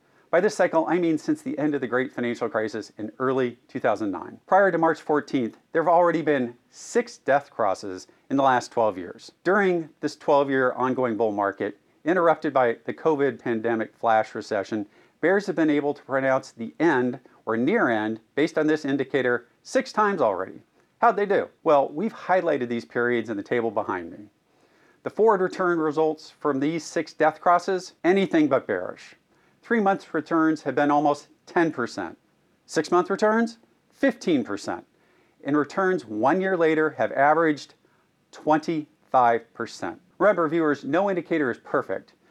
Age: 50-69